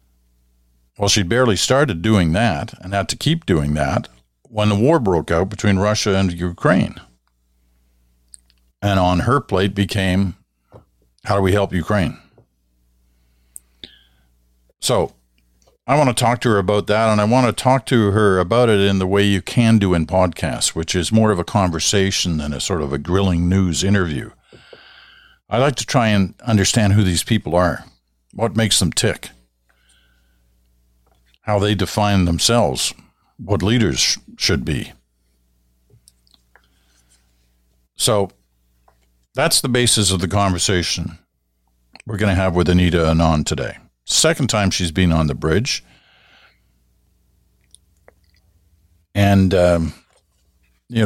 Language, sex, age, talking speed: English, male, 50-69, 140 wpm